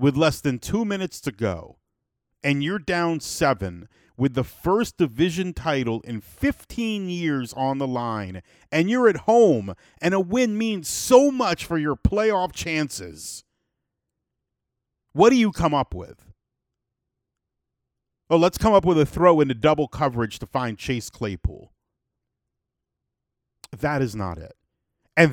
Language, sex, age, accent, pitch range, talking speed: English, male, 40-59, American, 110-160 Hz, 145 wpm